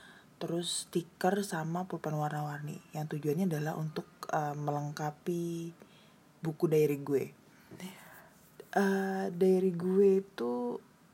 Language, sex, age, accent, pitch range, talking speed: Indonesian, female, 20-39, native, 155-190 Hz, 95 wpm